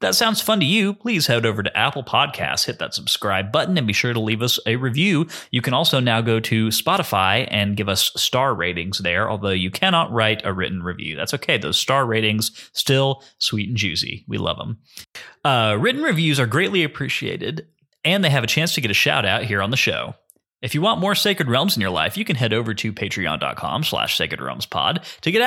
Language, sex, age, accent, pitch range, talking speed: English, male, 30-49, American, 105-155 Hz, 220 wpm